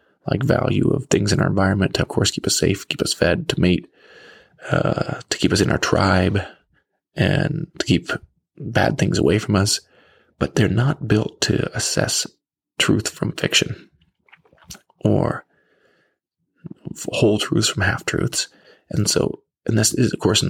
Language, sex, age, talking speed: English, male, 20-39, 160 wpm